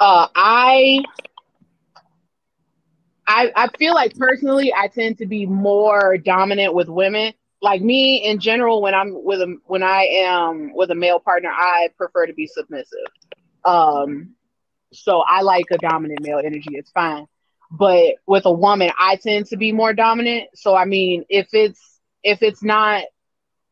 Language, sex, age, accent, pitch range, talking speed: English, female, 20-39, American, 185-230 Hz, 160 wpm